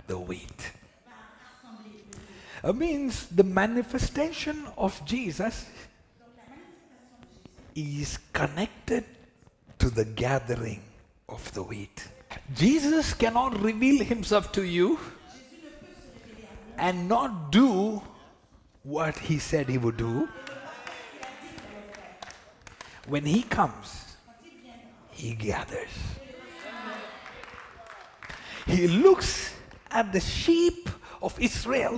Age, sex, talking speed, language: 60-79, male, 80 wpm, English